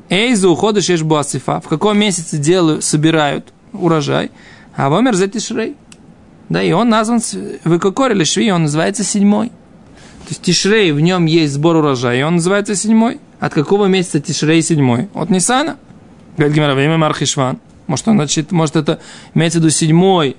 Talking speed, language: 150 wpm, Russian